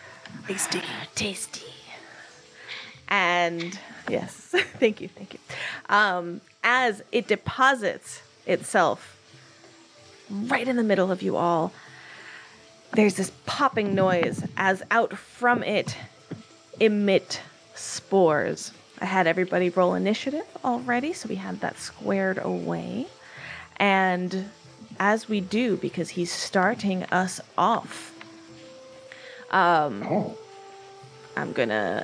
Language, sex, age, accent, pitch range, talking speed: English, female, 20-39, American, 175-225 Hz, 100 wpm